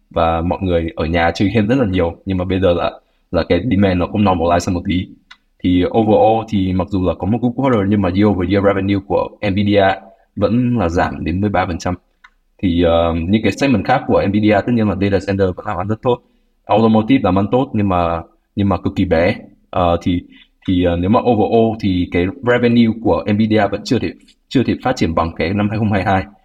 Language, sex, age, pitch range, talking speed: Vietnamese, male, 20-39, 90-110 Hz, 230 wpm